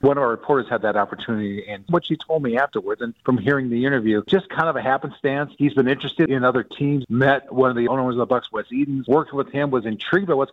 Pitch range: 115-145 Hz